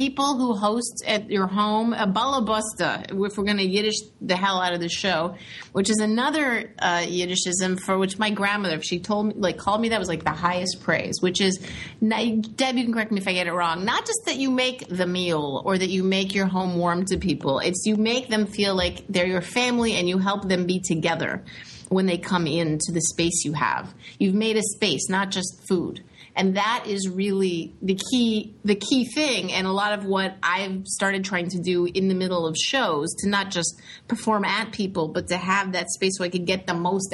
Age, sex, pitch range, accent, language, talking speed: 30-49, female, 180-215 Hz, American, English, 230 wpm